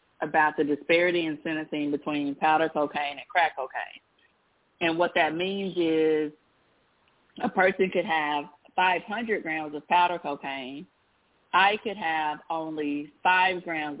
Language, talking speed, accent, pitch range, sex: English, 135 wpm, American, 150-185 Hz, female